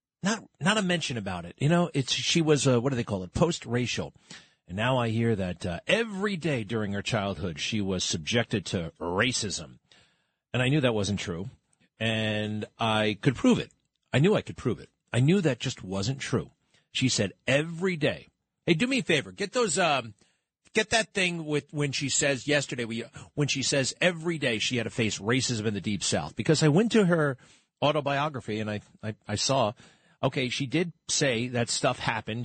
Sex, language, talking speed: male, English, 205 wpm